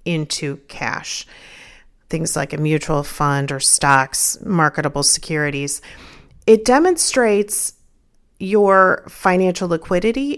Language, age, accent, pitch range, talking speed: English, 40-59, American, 155-195 Hz, 90 wpm